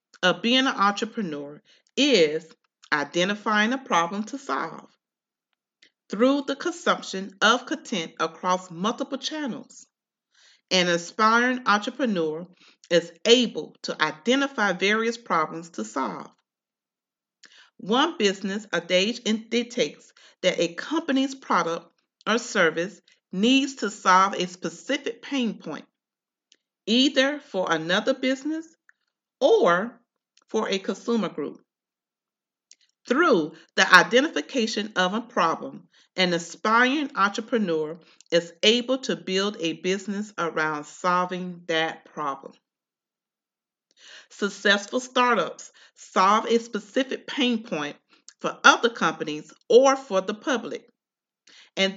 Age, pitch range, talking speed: 40-59, 175-250 Hz, 105 wpm